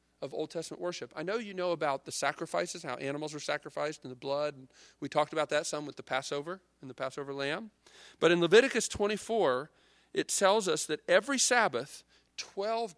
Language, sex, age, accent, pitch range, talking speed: English, male, 40-59, American, 125-190 Hz, 190 wpm